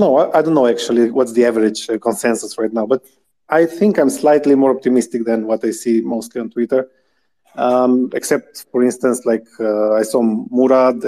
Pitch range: 115-130 Hz